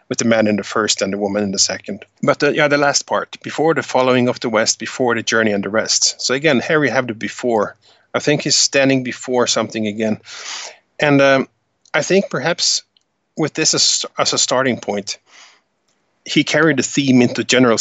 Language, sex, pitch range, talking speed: English, male, 110-135 Hz, 205 wpm